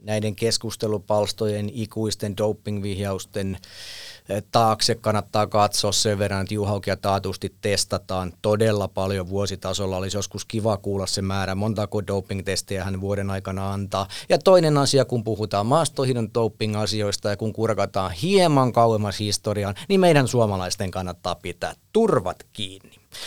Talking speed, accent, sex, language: 125 wpm, Finnish, male, English